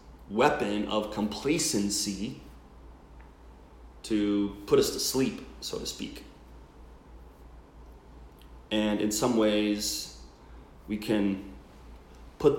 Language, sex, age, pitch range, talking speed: English, male, 30-49, 70-110 Hz, 85 wpm